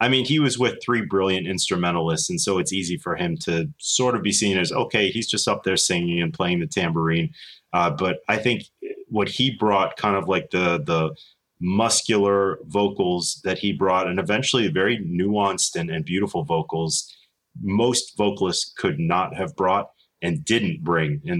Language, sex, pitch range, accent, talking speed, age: English, male, 95-120 Hz, American, 180 wpm, 30-49